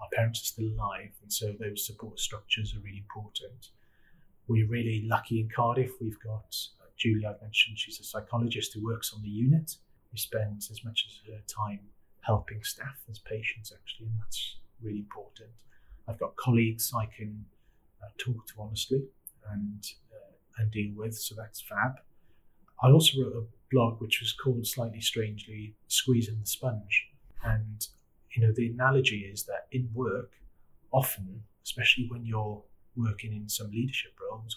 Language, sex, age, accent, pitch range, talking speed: English, male, 30-49, British, 105-115 Hz, 165 wpm